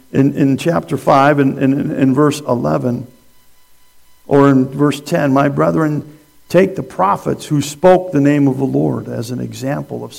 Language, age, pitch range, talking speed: English, 50-69, 125-150 Hz, 170 wpm